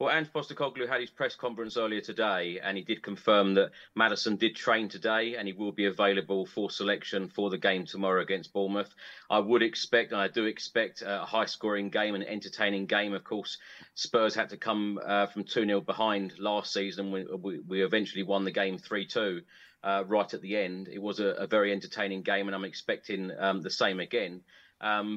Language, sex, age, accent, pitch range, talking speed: English, male, 30-49, British, 100-115 Hz, 195 wpm